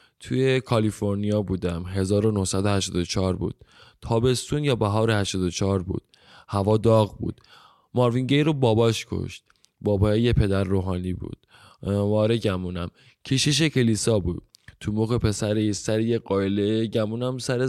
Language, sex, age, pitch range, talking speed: Persian, male, 20-39, 100-120 Hz, 120 wpm